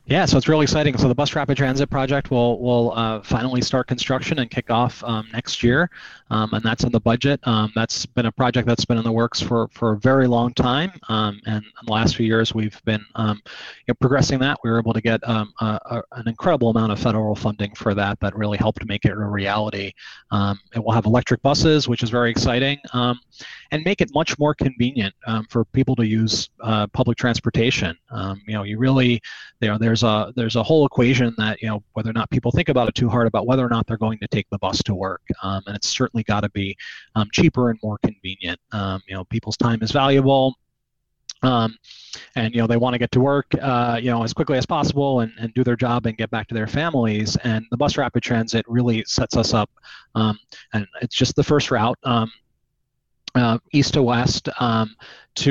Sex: male